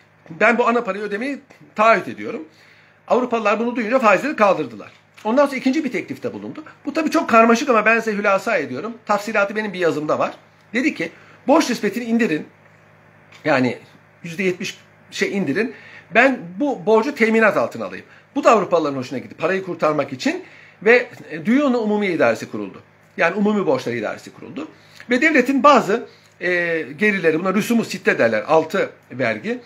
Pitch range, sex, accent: 160-240 Hz, male, native